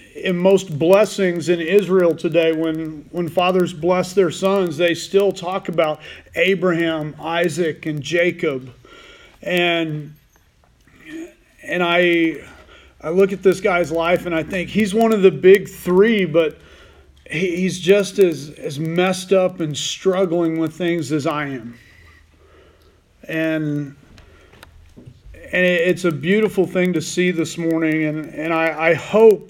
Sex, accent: male, American